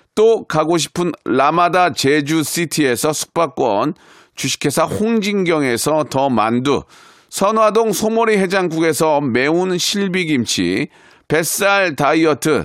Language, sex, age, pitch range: Korean, male, 40-59, 155-205 Hz